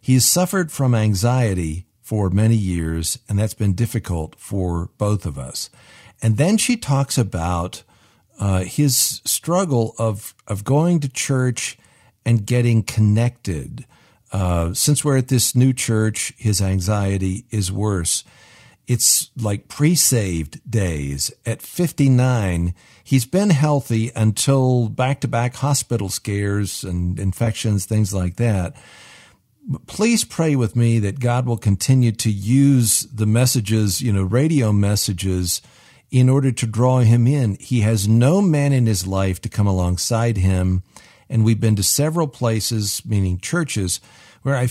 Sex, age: male, 50-69